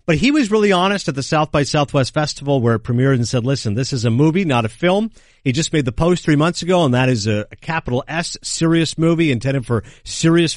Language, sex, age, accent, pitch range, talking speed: English, male, 50-69, American, 110-155 Hz, 245 wpm